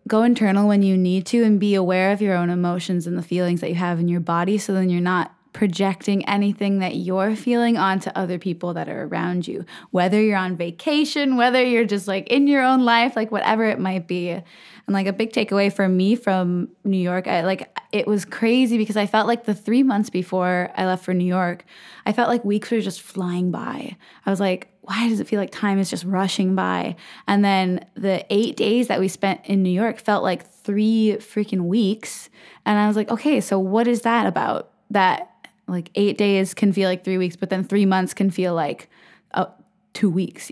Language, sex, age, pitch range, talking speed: English, female, 10-29, 185-215 Hz, 220 wpm